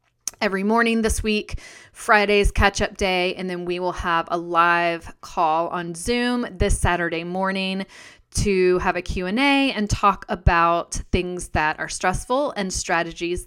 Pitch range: 180-230 Hz